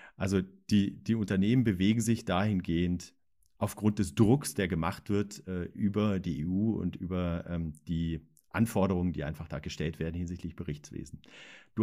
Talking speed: 150 wpm